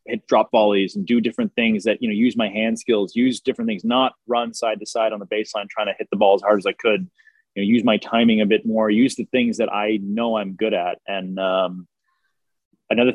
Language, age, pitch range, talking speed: English, 20-39, 100-125 Hz, 250 wpm